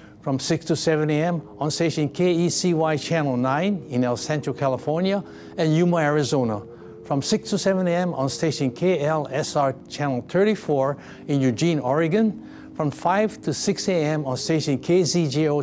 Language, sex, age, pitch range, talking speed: English, male, 60-79, 130-175 Hz, 145 wpm